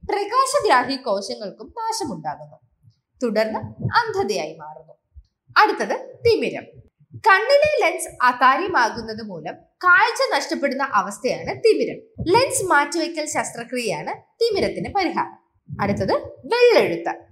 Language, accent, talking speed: Malayalam, native, 80 wpm